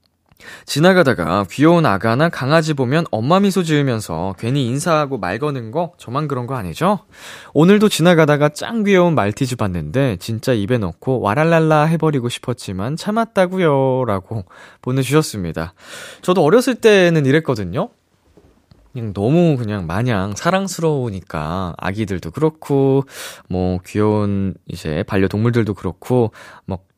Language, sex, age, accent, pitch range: Korean, male, 20-39, native, 100-160 Hz